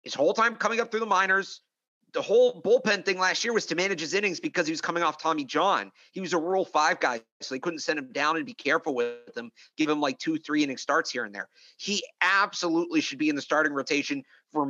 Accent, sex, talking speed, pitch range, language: American, male, 255 wpm, 145-180 Hz, English